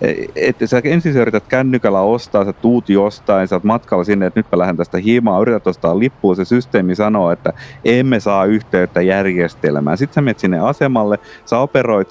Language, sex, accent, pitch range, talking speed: Finnish, male, native, 95-120 Hz, 185 wpm